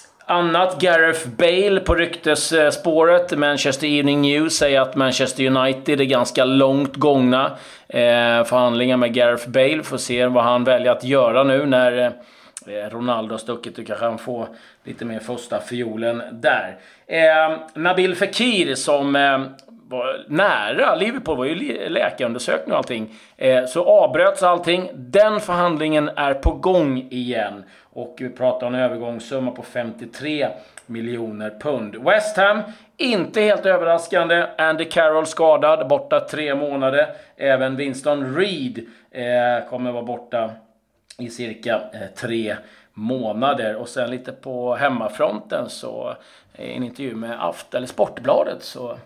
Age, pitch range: 30-49, 120-160 Hz